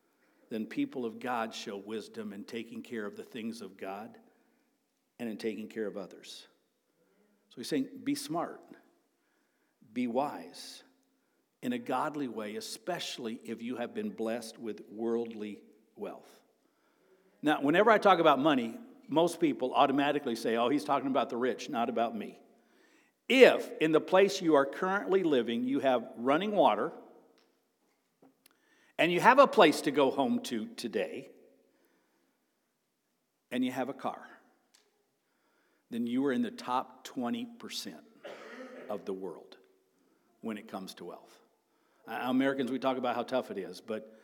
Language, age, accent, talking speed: English, 60-79, American, 150 wpm